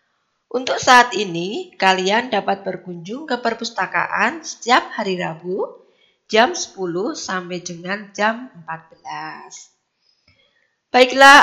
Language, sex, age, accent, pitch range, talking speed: Indonesian, female, 20-39, native, 185-245 Hz, 95 wpm